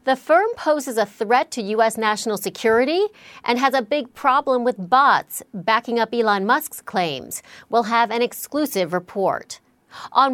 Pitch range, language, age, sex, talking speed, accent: 200-255 Hz, English, 40-59, female, 155 wpm, American